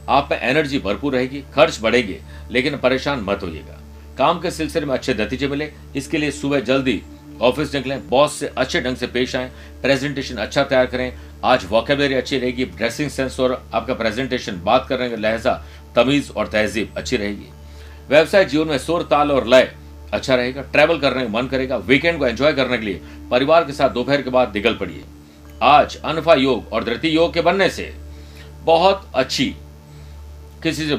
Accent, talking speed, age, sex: native, 180 wpm, 50-69, male